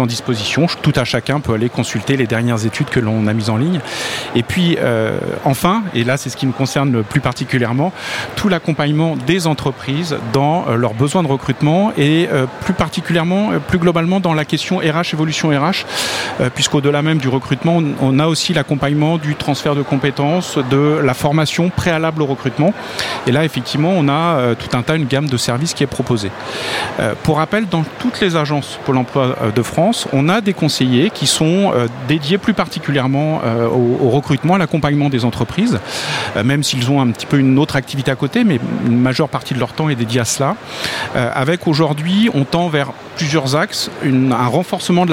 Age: 40-59